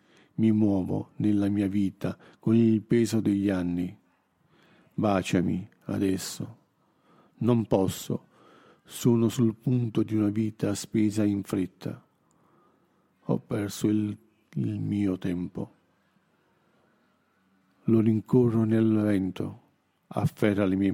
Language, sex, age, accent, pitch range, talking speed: Italian, male, 50-69, native, 100-115 Hz, 105 wpm